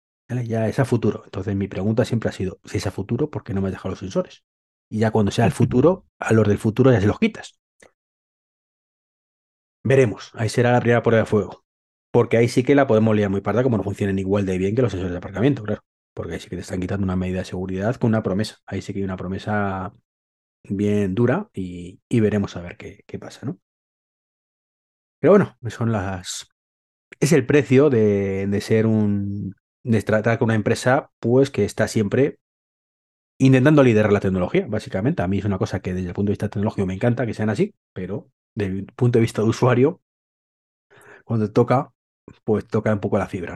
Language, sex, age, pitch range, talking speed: Spanish, male, 30-49, 95-120 Hz, 215 wpm